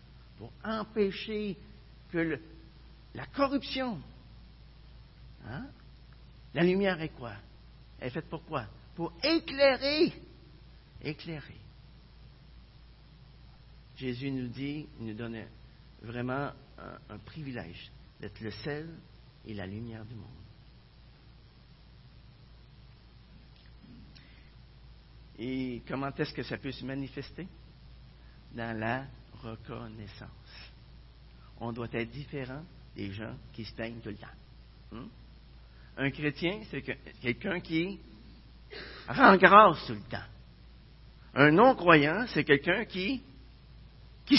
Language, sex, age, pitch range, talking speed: French, male, 50-69, 115-160 Hz, 105 wpm